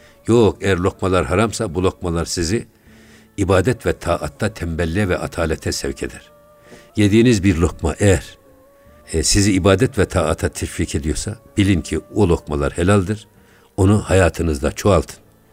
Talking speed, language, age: 130 wpm, Turkish, 60-79